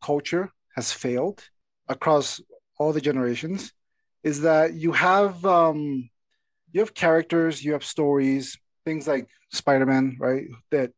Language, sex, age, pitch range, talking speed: English, male, 30-49, 135-165 Hz, 125 wpm